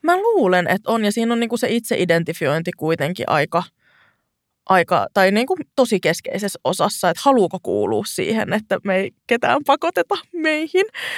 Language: Finnish